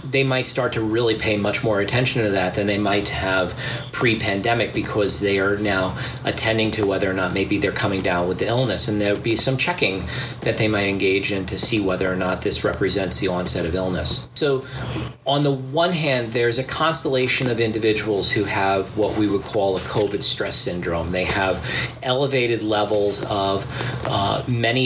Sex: male